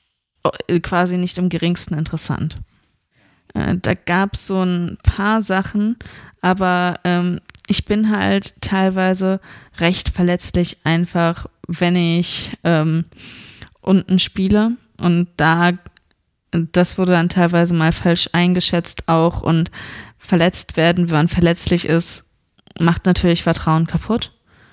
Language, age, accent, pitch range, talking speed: German, 20-39, German, 165-185 Hz, 115 wpm